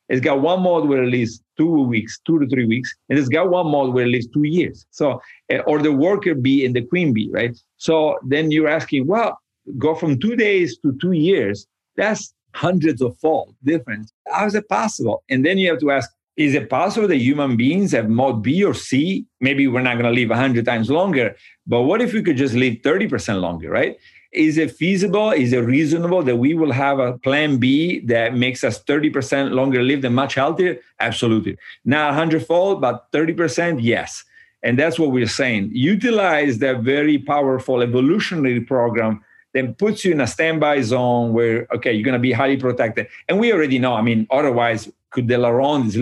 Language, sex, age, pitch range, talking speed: English, male, 50-69, 120-155 Hz, 200 wpm